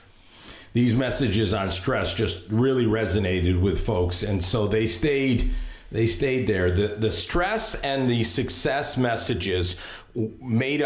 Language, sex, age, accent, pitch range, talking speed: English, male, 50-69, American, 90-110 Hz, 140 wpm